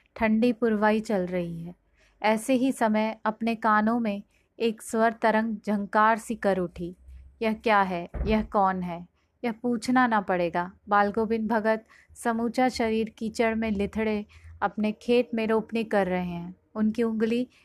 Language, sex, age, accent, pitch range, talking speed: Hindi, female, 30-49, native, 205-230 Hz, 150 wpm